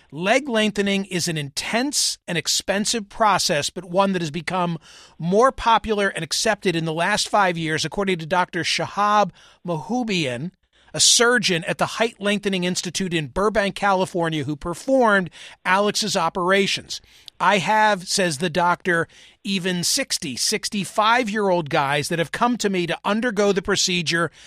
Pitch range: 170-215 Hz